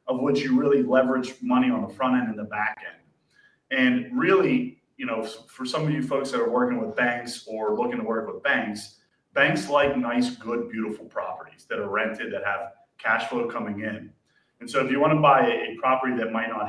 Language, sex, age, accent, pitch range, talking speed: English, male, 30-49, American, 110-155 Hz, 220 wpm